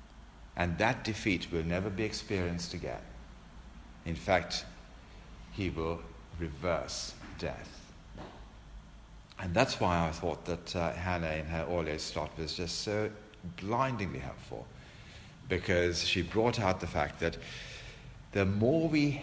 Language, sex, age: English, male, 60-79